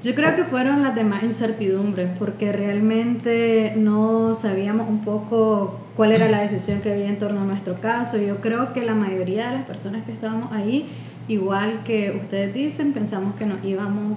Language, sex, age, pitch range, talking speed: Spanish, female, 20-39, 200-230 Hz, 180 wpm